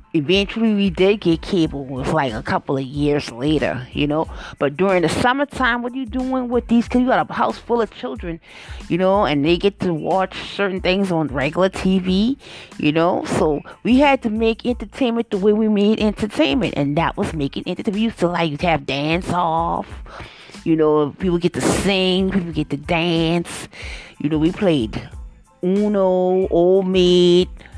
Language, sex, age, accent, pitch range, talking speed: English, female, 30-49, American, 160-240 Hz, 190 wpm